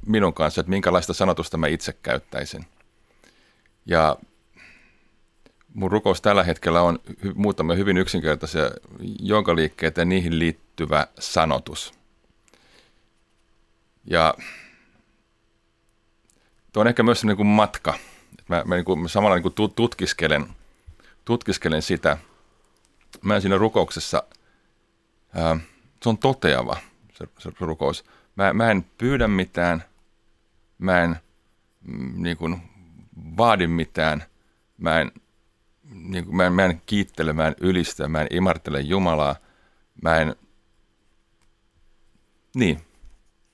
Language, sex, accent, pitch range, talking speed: Finnish, male, native, 80-100 Hz, 105 wpm